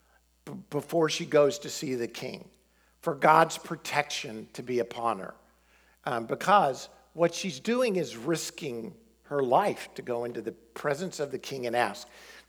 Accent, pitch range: American, 120-180 Hz